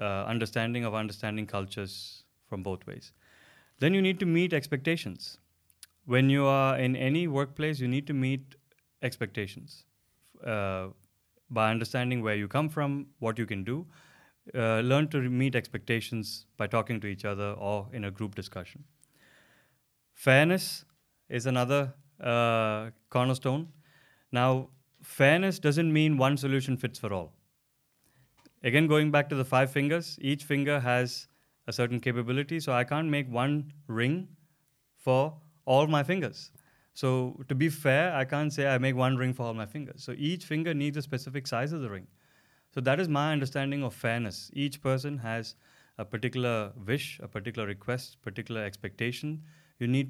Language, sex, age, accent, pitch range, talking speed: Danish, male, 30-49, Indian, 115-145 Hz, 160 wpm